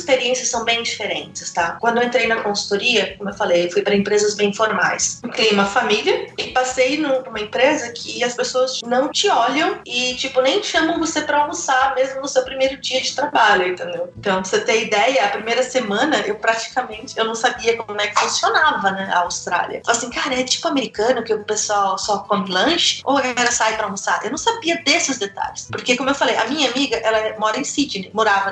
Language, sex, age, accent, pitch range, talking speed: Portuguese, female, 20-39, Brazilian, 220-275 Hz, 210 wpm